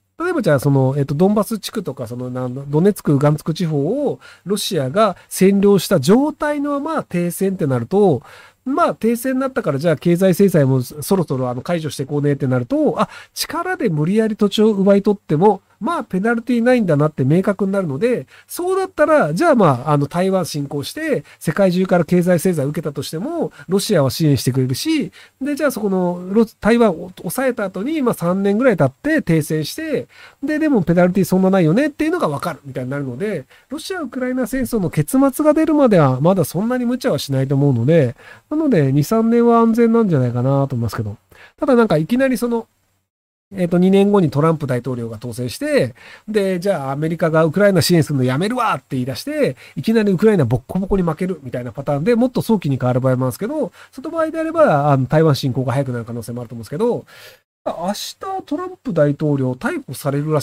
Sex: male